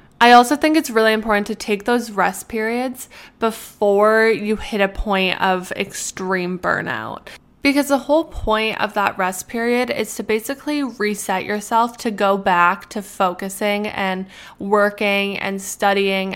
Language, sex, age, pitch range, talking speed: English, female, 10-29, 195-225 Hz, 150 wpm